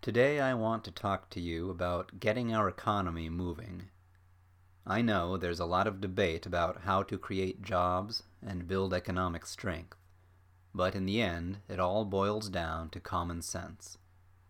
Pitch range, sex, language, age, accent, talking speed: 90-105 Hz, male, English, 30-49, American, 160 wpm